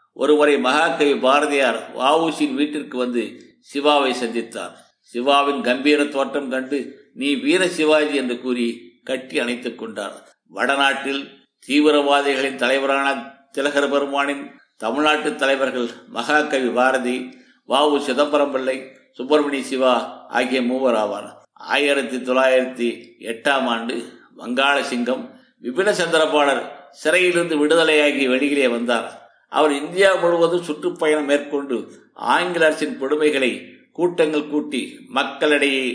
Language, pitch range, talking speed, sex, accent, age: Tamil, 130-150 Hz, 100 wpm, male, native, 50-69